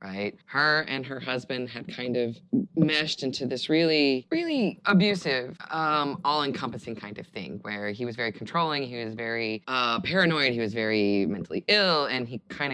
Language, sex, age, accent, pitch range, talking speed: English, female, 20-39, American, 110-175 Hz, 175 wpm